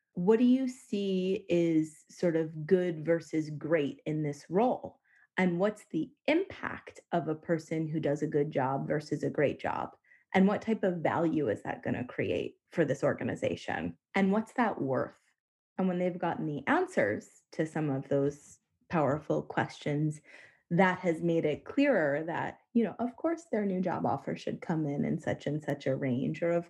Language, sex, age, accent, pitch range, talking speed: English, female, 20-39, American, 150-200 Hz, 185 wpm